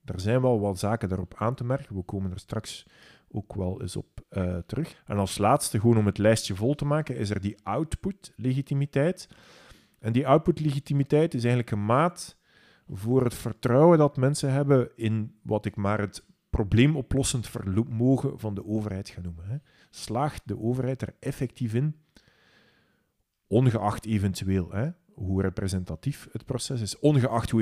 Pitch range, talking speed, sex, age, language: 105-140 Hz, 165 wpm, male, 40-59, Dutch